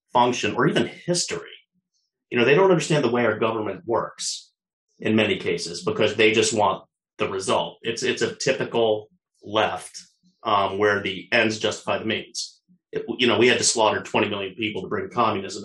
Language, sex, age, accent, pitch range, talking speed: English, male, 30-49, American, 105-160 Hz, 185 wpm